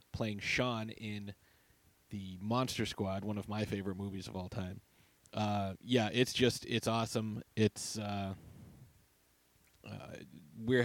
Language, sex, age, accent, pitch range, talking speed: English, male, 30-49, American, 100-120 Hz, 135 wpm